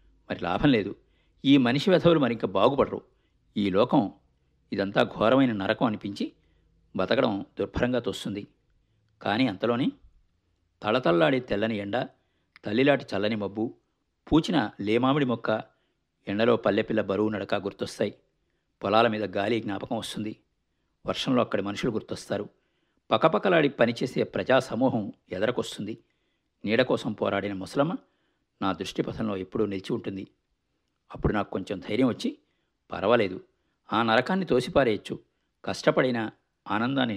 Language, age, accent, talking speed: Telugu, 50-69, native, 110 wpm